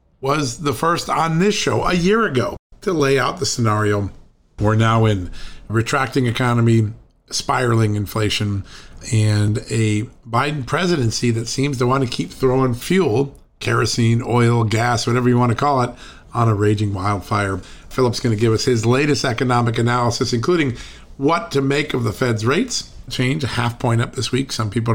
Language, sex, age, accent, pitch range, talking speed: English, male, 50-69, American, 105-125 Hz, 175 wpm